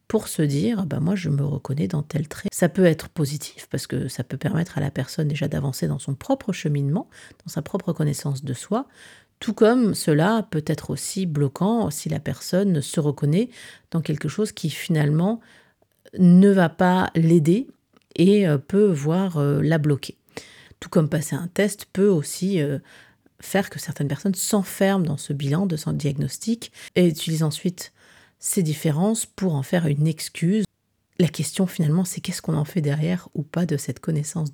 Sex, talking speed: female, 185 wpm